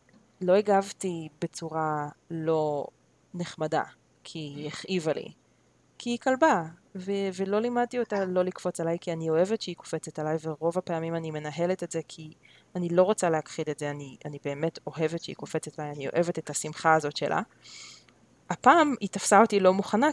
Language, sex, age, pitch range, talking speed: Hebrew, female, 20-39, 160-200 Hz, 170 wpm